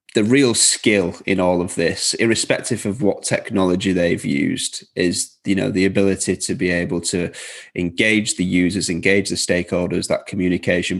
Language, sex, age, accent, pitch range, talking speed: English, male, 30-49, British, 90-105 Hz, 165 wpm